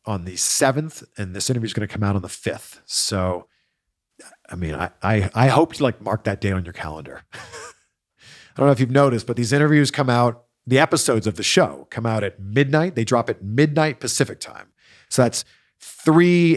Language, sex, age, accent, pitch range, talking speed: English, male, 40-59, American, 105-155 Hz, 210 wpm